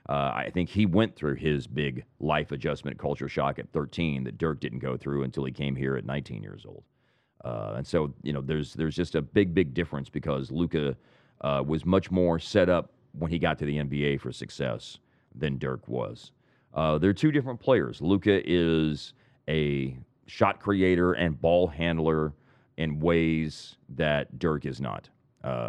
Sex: male